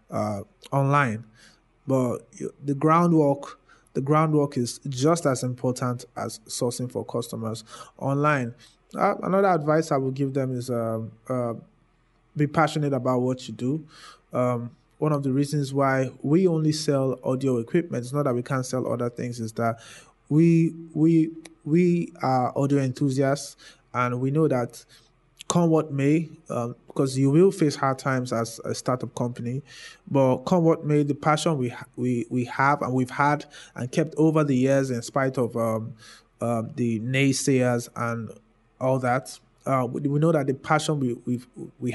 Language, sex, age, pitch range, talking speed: English, male, 20-39, 125-150 Hz, 165 wpm